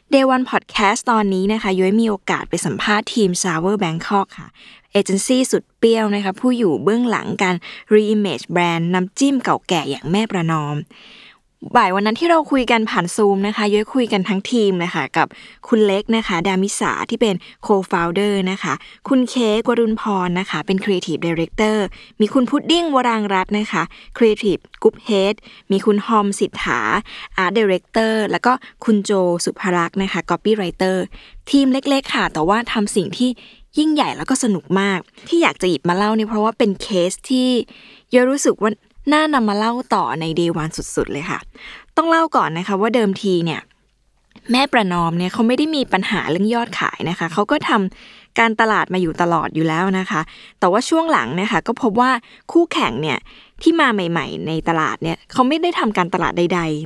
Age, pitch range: 20-39, 185-240 Hz